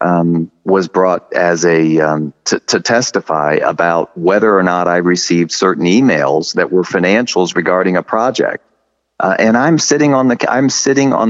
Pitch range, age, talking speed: 90-115 Hz, 40-59, 170 wpm